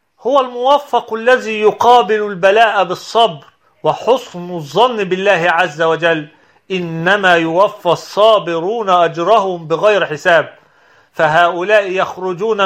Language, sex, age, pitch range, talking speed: Arabic, male, 40-59, 180-215 Hz, 90 wpm